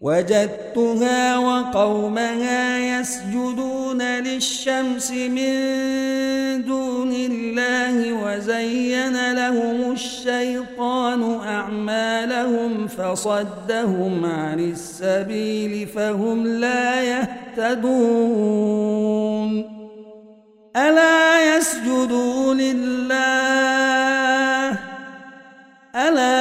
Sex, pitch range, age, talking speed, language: male, 215-255 Hz, 50-69, 50 wpm, Arabic